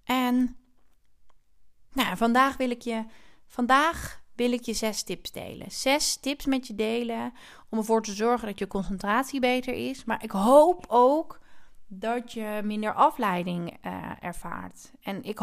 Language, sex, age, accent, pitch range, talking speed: Dutch, female, 30-49, Dutch, 200-250 Hz, 135 wpm